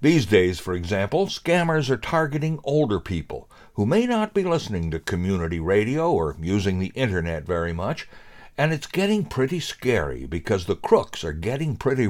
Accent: American